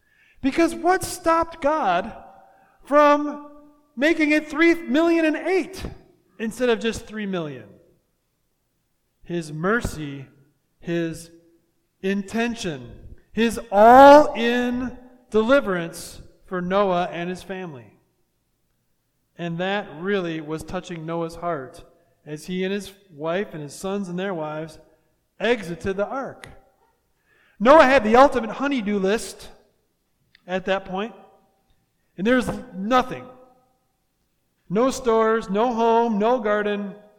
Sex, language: male, English